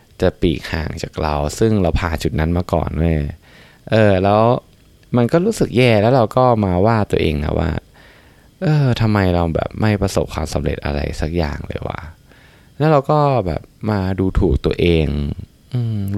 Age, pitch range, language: 20-39, 80-115 Hz, Thai